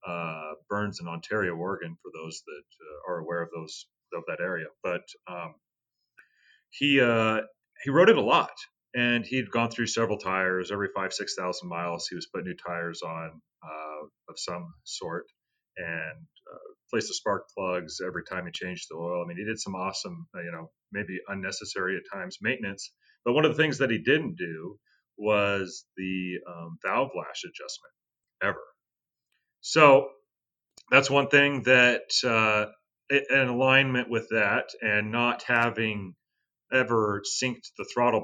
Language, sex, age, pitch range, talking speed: English, male, 40-59, 90-125 Hz, 165 wpm